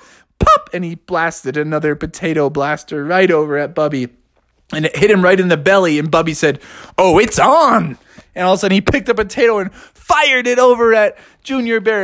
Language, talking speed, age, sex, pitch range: English, 200 wpm, 20-39, male, 170-245 Hz